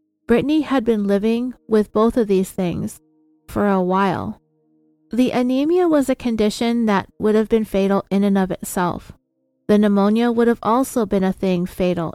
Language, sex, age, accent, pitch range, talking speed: English, female, 30-49, American, 190-235 Hz, 175 wpm